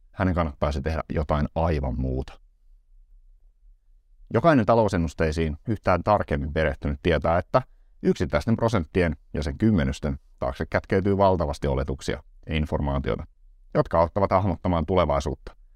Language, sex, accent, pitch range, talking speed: Finnish, male, native, 75-95 Hz, 105 wpm